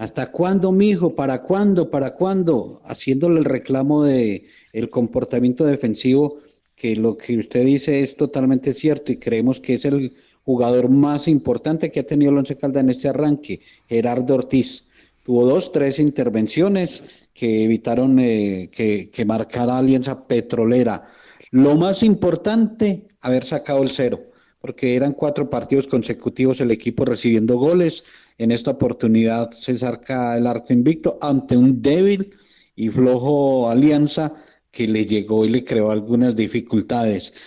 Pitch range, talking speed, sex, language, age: 120-150 Hz, 145 wpm, male, Spanish, 40-59